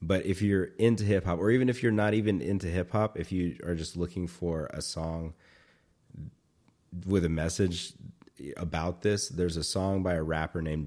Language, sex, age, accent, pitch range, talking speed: English, male, 30-49, American, 80-95 Hz, 195 wpm